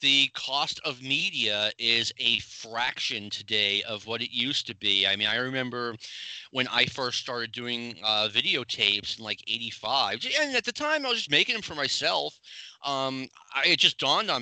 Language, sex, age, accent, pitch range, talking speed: English, male, 30-49, American, 115-155 Hz, 185 wpm